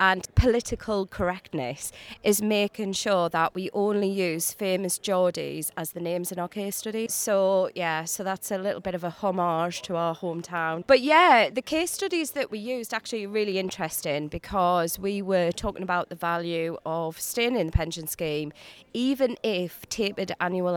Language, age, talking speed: English, 30-49, 175 wpm